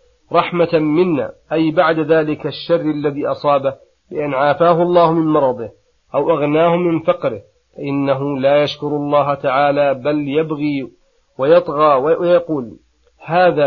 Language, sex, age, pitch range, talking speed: Arabic, male, 40-59, 140-160 Hz, 120 wpm